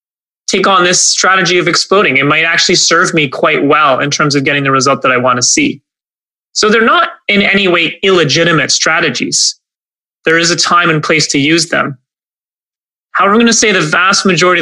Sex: male